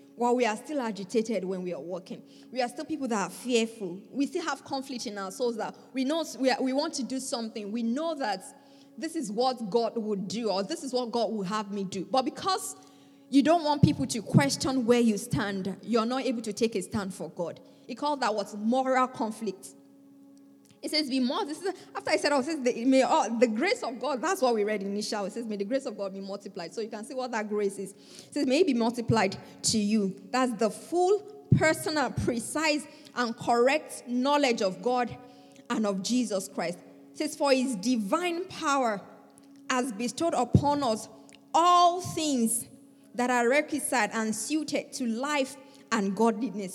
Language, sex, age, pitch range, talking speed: English, female, 20-39, 210-275 Hz, 200 wpm